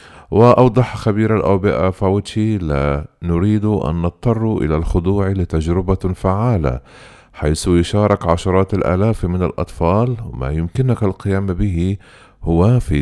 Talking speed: 110 wpm